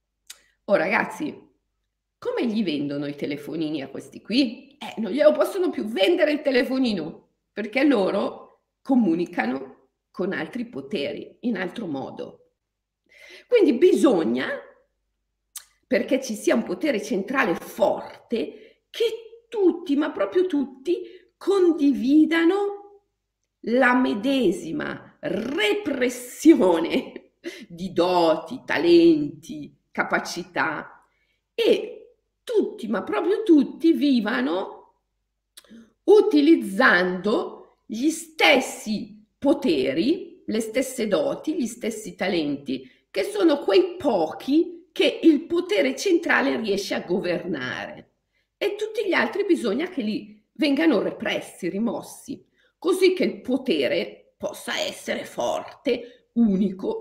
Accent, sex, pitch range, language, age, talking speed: native, female, 230-360 Hz, Italian, 50-69, 100 wpm